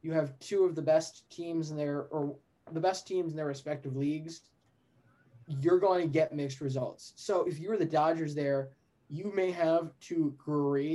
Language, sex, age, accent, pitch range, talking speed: English, male, 20-39, American, 140-165 Hz, 190 wpm